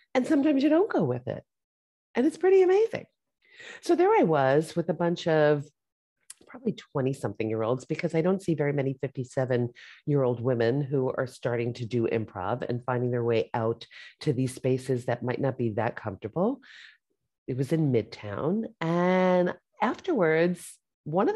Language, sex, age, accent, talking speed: English, female, 40-59, American, 175 wpm